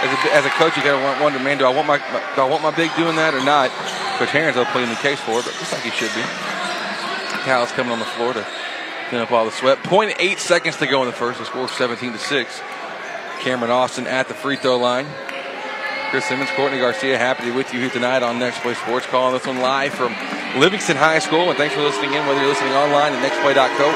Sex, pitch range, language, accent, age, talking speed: male, 130-185 Hz, English, American, 30-49, 255 wpm